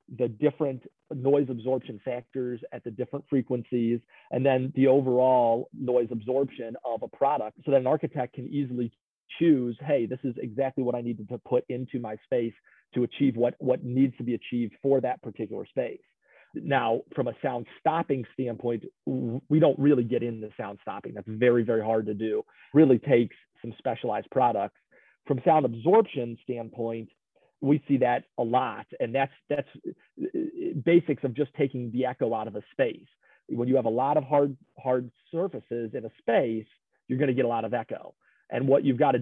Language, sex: English, male